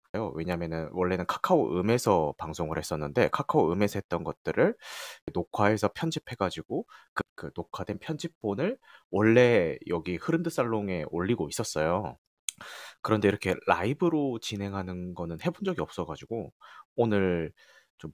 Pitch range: 90-120 Hz